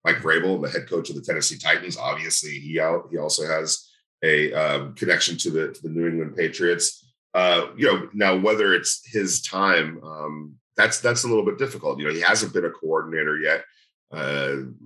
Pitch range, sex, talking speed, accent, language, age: 75-90 Hz, male, 200 wpm, American, English, 40-59